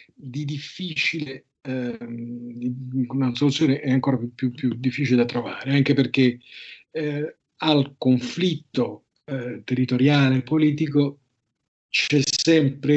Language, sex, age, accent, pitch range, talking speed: Italian, male, 50-69, native, 120-145 Hz, 110 wpm